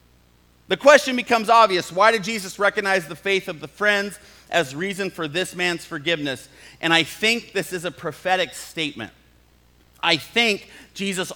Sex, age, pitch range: male, 40-59, 135-200 Hz